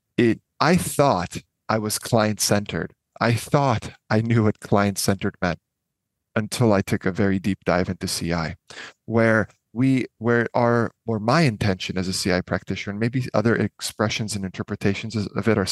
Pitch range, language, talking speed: 100-125 Hz, English, 160 wpm